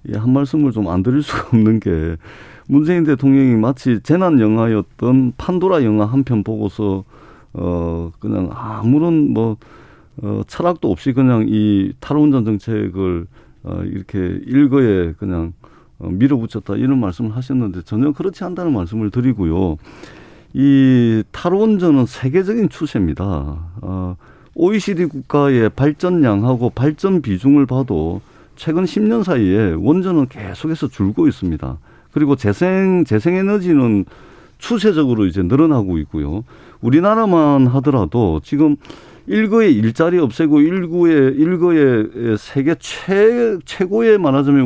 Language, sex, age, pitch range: Korean, male, 40-59, 105-155 Hz